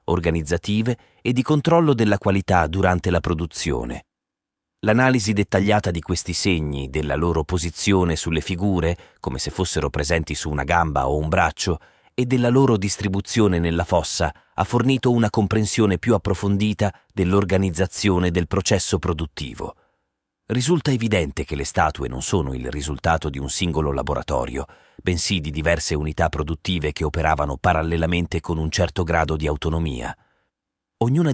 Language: Italian